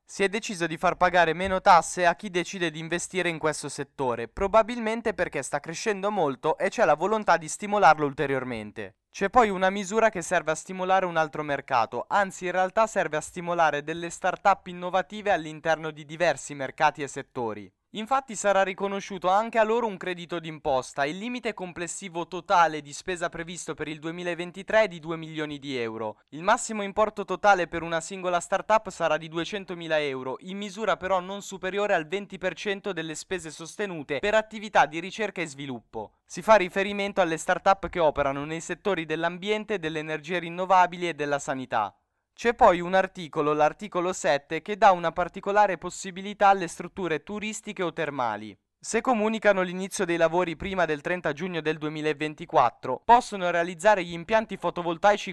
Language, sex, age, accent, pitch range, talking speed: Italian, male, 20-39, native, 155-195 Hz, 170 wpm